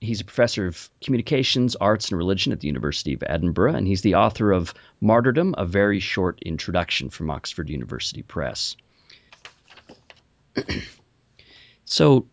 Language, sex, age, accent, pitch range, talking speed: English, male, 40-59, American, 85-110 Hz, 135 wpm